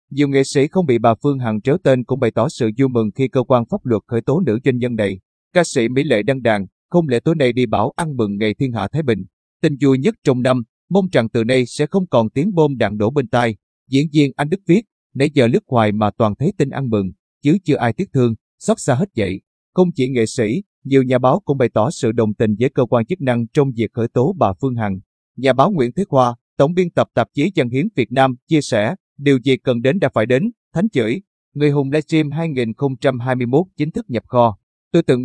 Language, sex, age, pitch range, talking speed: Vietnamese, male, 20-39, 115-150 Hz, 250 wpm